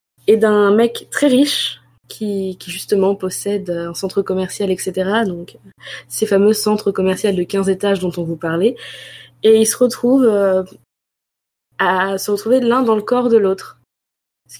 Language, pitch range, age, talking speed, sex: French, 190-225 Hz, 20-39, 165 wpm, female